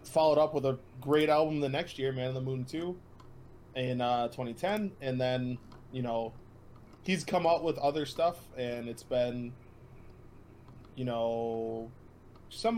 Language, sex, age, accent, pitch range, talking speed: English, male, 20-39, American, 115-135 Hz, 155 wpm